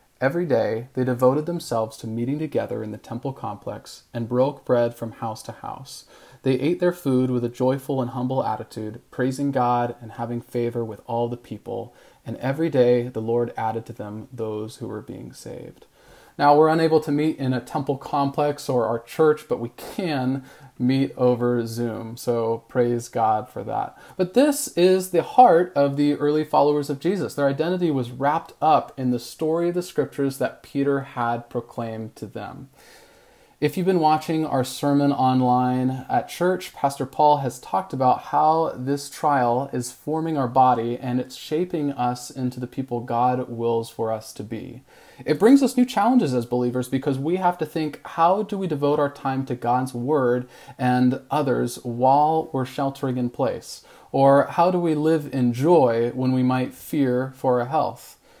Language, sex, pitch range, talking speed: English, male, 120-150 Hz, 185 wpm